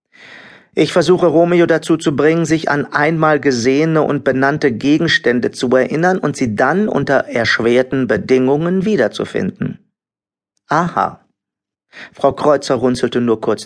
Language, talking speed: German, 125 wpm